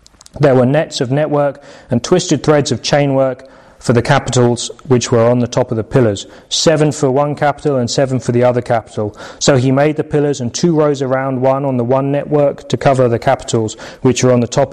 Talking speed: 225 wpm